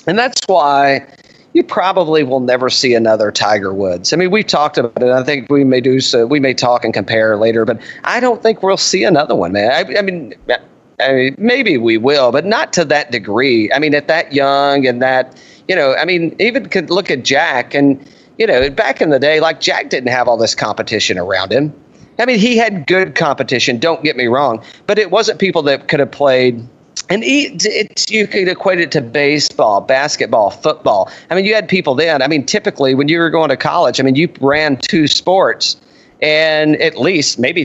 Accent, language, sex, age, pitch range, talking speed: American, English, male, 40-59, 135-185 Hz, 220 wpm